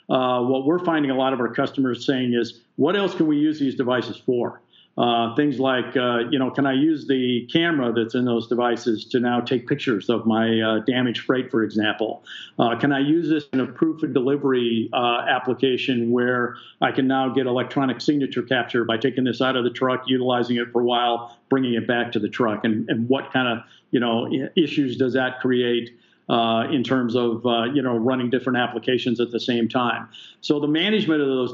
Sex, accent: male, American